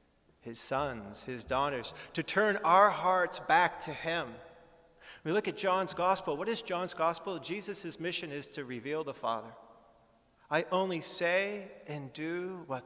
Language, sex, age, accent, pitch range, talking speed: English, male, 40-59, American, 130-175 Hz, 155 wpm